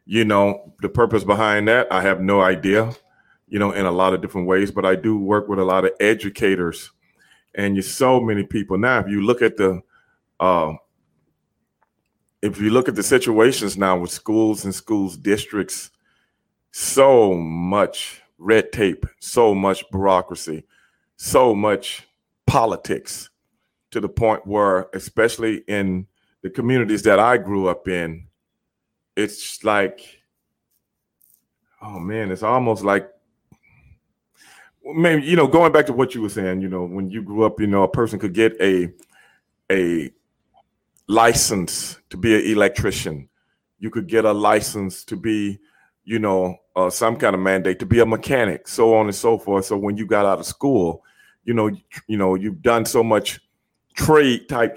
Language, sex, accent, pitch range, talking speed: English, male, American, 95-115 Hz, 165 wpm